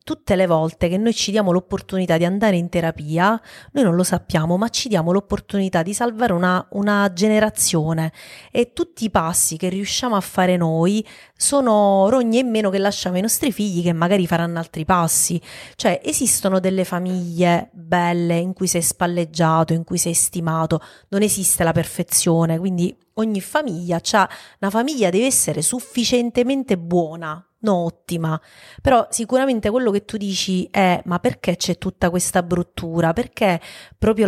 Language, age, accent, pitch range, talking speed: Italian, 30-49, native, 175-215 Hz, 160 wpm